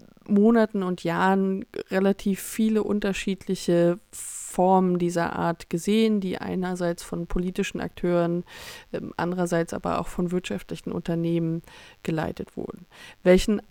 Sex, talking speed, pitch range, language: female, 105 wpm, 180-205 Hz, German